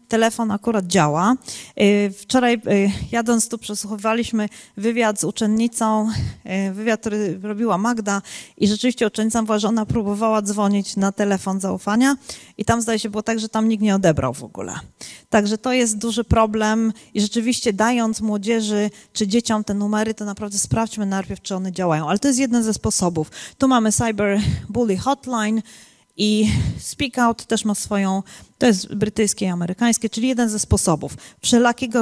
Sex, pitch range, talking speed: female, 195-235 Hz, 160 wpm